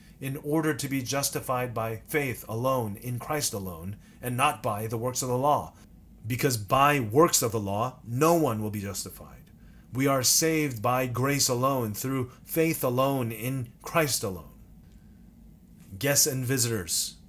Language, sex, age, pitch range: English, male, 30-49, 110-135 Hz